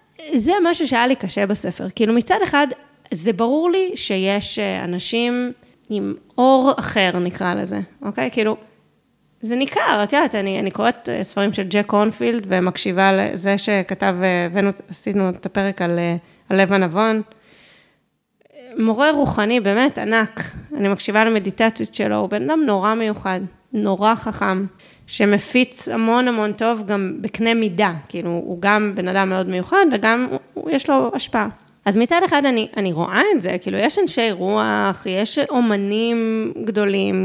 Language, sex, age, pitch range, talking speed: Hebrew, female, 20-39, 195-235 Hz, 145 wpm